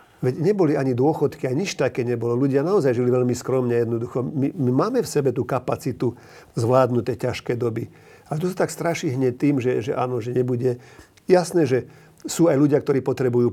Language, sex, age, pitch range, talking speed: Slovak, male, 50-69, 120-145 Hz, 195 wpm